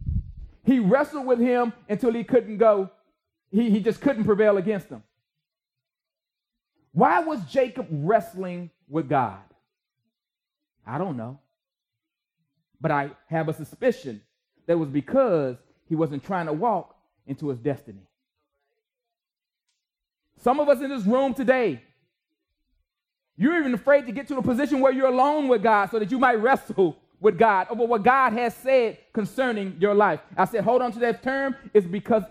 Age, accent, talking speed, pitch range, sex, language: 30-49, American, 155 wpm, 160-250 Hz, male, English